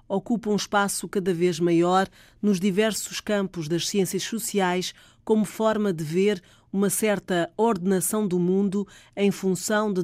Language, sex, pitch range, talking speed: Portuguese, female, 170-205 Hz, 145 wpm